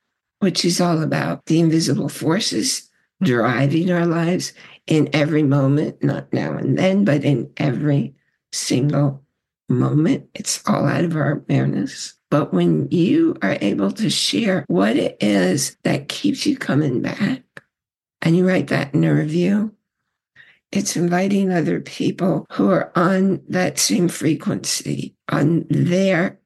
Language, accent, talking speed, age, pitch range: English, American, 140 wpm, 60-79, 145-200 Hz